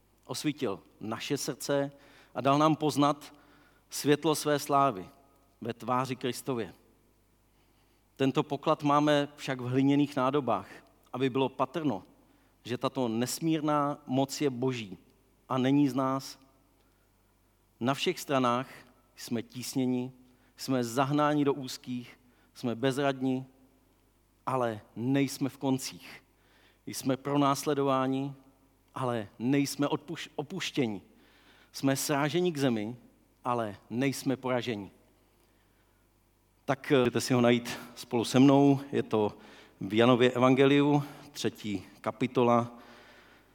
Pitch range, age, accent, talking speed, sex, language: 110-140 Hz, 40-59, native, 105 wpm, male, Czech